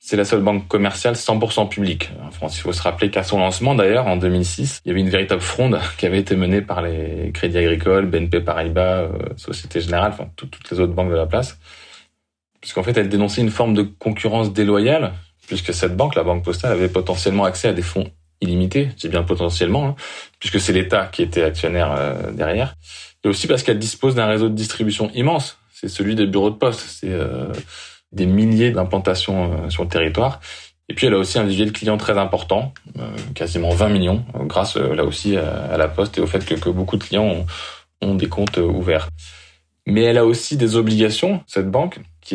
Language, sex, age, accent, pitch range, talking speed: French, male, 20-39, French, 90-110 Hz, 205 wpm